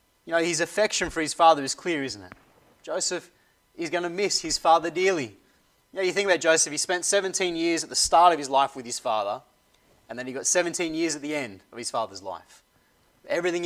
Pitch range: 150-185 Hz